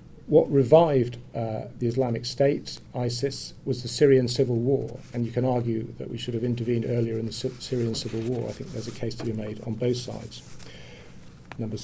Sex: male